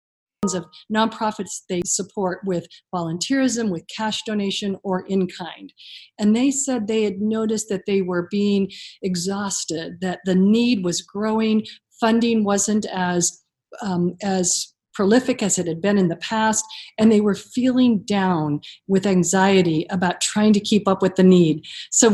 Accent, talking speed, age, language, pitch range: American, 150 wpm, 40-59, English, 185-220 Hz